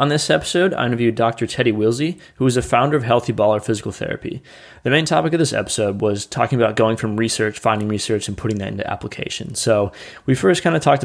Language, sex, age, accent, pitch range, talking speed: English, male, 20-39, American, 105-125 Hz, 230 wpm